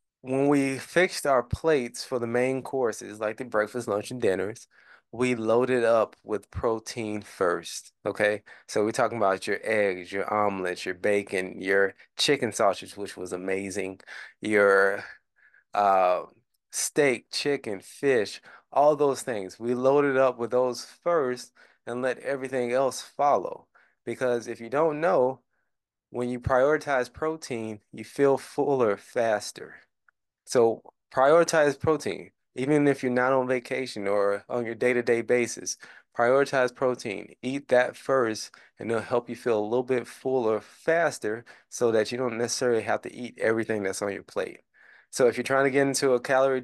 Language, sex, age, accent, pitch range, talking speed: English, male, 20-39, American, 110-135 Hz, 155 wpm